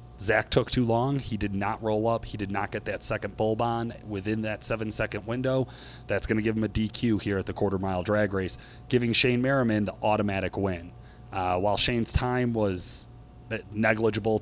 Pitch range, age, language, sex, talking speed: 105-130 Hz, 30-49, English, male, 190 wpm